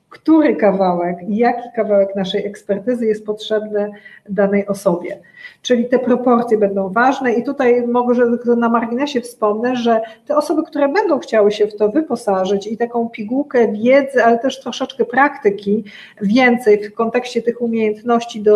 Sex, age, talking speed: female, 40-59, 140 wpm